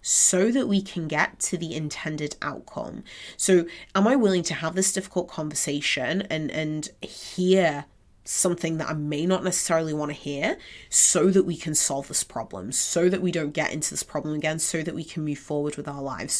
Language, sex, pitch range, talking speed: English, female, 150-175 Hz, 200 wpm